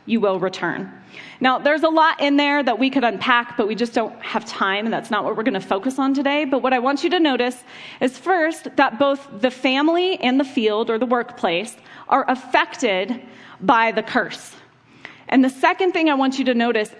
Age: 30-49